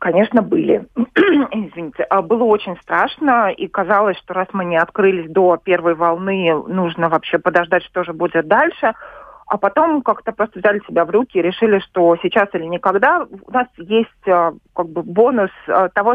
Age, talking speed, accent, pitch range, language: 30-49, 165 wpm, native, 180-225 Hz, Russian